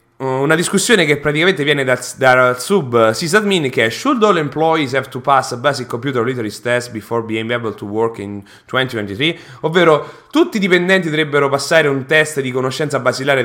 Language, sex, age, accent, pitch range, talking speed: English, male, 30-49, Italian, 130-180 Hz, 175 wpm